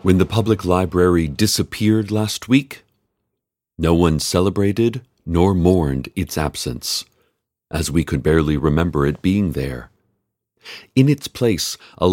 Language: English